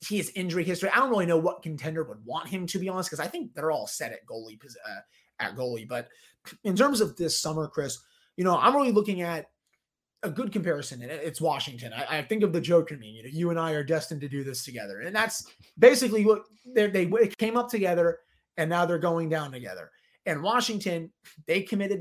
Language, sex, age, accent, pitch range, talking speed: English, male, 30-49, American, 150-195 Hz, 225 wpm